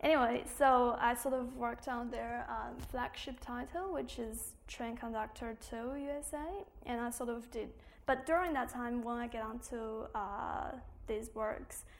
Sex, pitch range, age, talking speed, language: female, 215-255 Hz, 20-39, 165 wpm, English